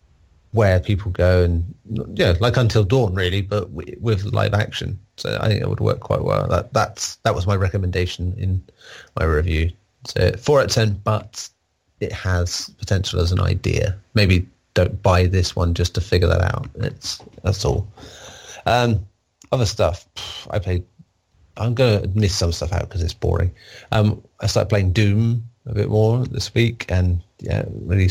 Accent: British